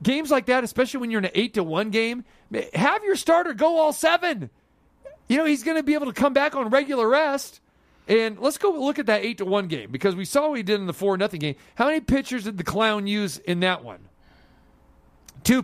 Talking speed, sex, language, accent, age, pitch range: 240 wpm, male, English, American, 40-59, 145-235 Hz